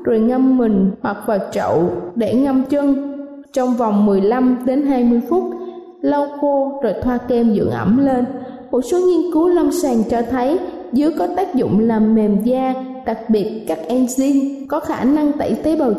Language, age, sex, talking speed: Vietnamese, 20-39, female, 180 wpm